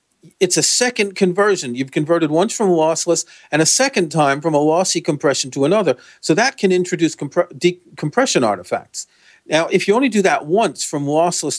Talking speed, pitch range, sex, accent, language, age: 175 wpm, 135-175 Hz, male, American, English, 40-59